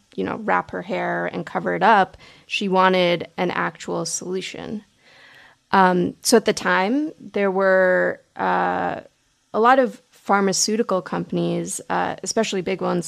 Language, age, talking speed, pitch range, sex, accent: English, 20-39, 140 wpm, 175-210 Hz, female, American